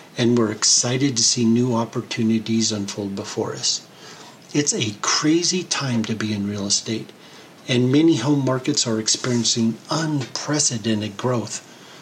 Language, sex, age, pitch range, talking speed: English, male, 50-69, 110-145 Hz, 135 wpm